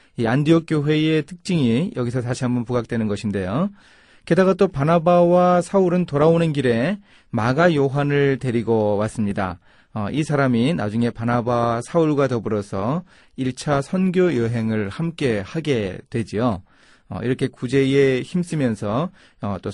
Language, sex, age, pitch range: Korean, male, 30-49, 120-170 Hz